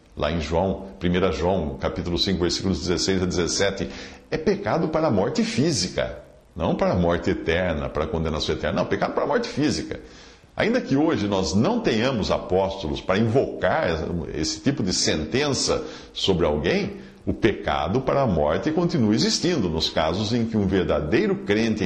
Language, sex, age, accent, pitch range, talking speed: Portuguese, male, 50-69, Brazilian, 90-130 Hz, 165 wpm